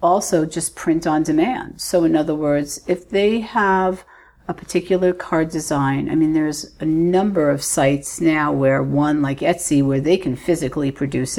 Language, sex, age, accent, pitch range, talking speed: English, female, 50-69, American, 145-190 Hz, 175 wpm